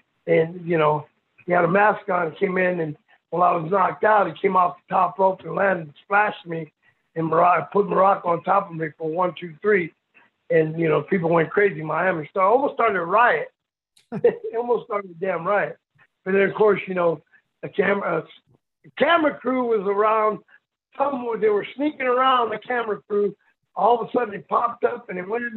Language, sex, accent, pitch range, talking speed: English, male, American, 170-215 Hz, 220 wpm